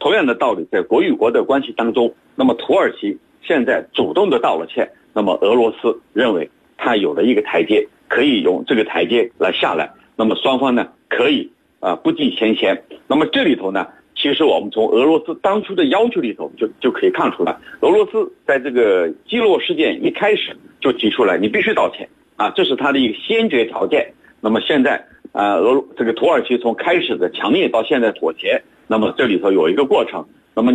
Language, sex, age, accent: Chinese, male, 50-69, native